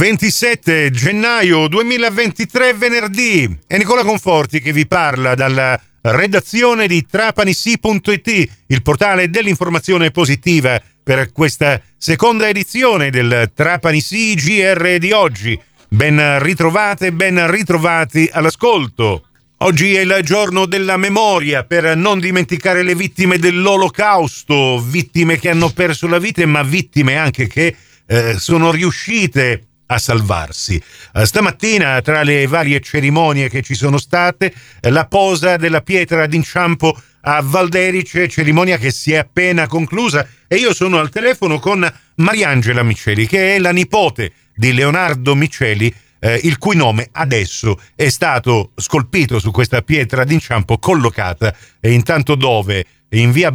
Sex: male